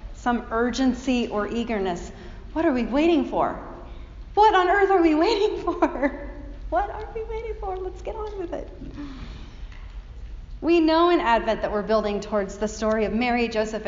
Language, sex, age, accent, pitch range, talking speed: English, female, 30-49, American, 205-280 Hz, 170 wpm